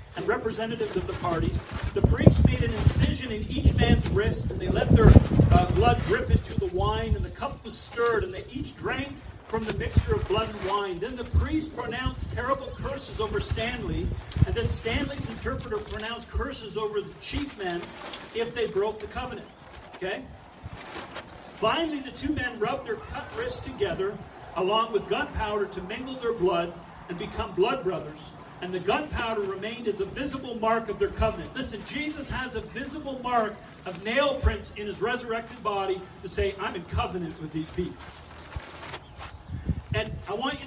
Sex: male